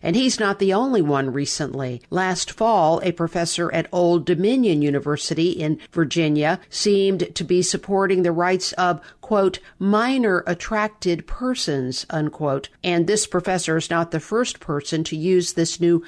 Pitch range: 160-200 Hz